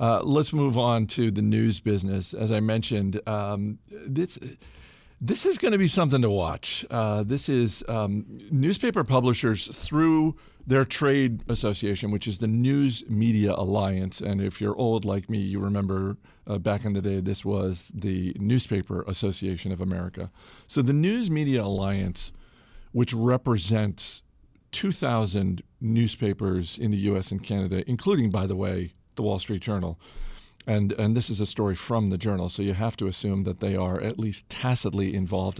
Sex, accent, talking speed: male, American, 165 wpm